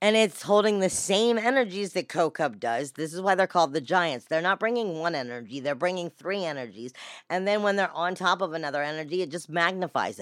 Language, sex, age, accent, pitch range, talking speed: English, female, 40-59, American, 155-210 Hz, 215 wpm